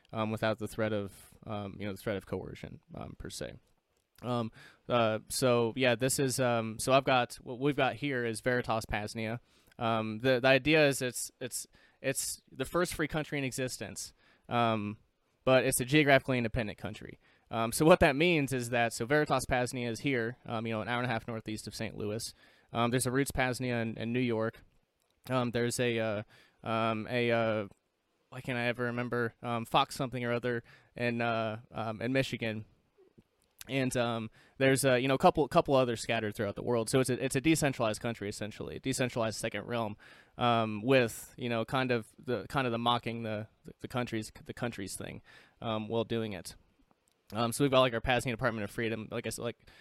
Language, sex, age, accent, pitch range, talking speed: English, male, 20-39, American, 110-130 Hz, 205 wpm